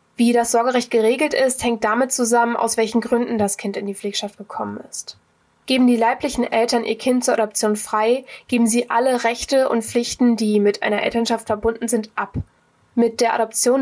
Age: 20-39